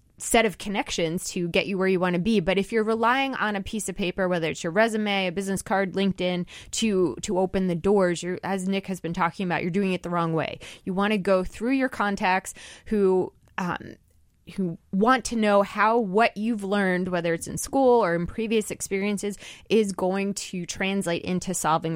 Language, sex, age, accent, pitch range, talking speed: English, female, 20-39, American, 175-210 Hz, 210 wpm